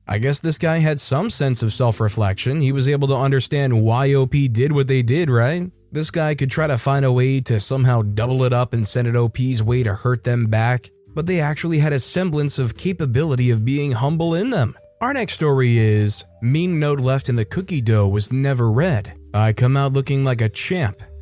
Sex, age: male, 20-39